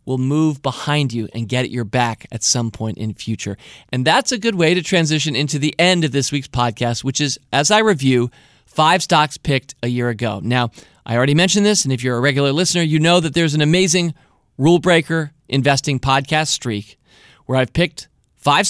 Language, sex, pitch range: English, male, 130-180 Hz